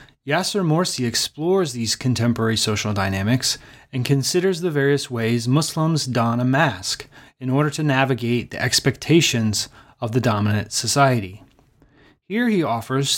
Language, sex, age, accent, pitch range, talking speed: English, male, 30-49, American, 115-145 Hz, 130 wpm